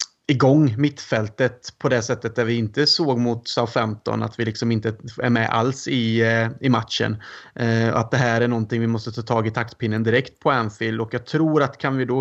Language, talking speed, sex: Swedish, 210 wpm, male